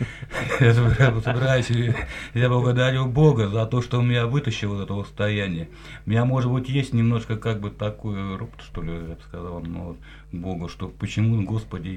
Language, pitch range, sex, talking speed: Russian, 95-120 Hz, male, 180 wpm